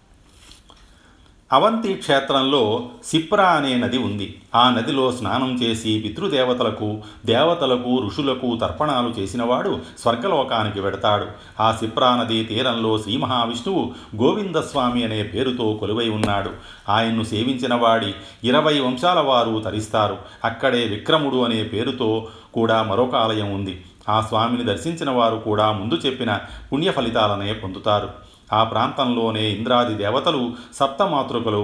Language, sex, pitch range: Telugu, male, 105-120 Hz